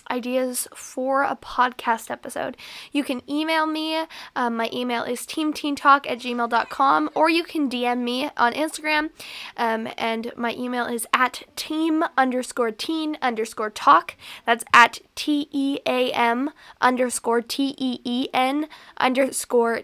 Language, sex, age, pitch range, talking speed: English, female, 10-29, 235-280 Hz, 120 wpm